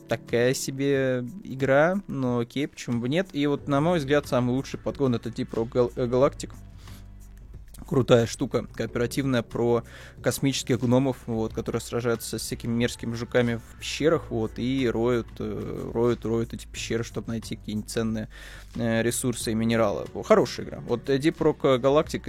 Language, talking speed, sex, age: Russian, 145 wpm, male, 20-39